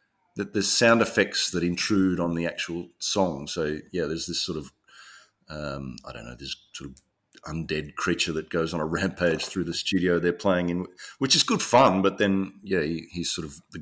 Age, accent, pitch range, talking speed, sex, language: 40-59, Australian, 90-115 Hz, 205 wpm, male, English